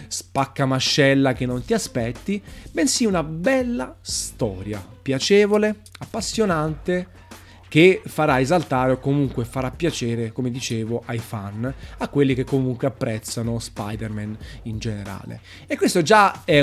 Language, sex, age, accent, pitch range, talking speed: Italian, male, 30-49, native, 115-150 Hz, 125 wpm